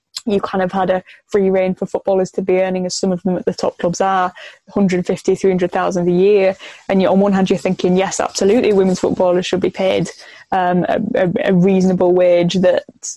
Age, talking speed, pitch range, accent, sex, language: 10-29, 220 wpm, 185-195 Hz, British, female, English